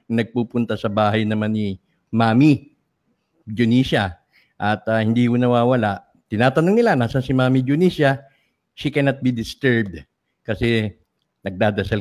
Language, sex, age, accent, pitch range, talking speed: English, male, 50-69, Filipino, 115-155 Hz, 120 wpm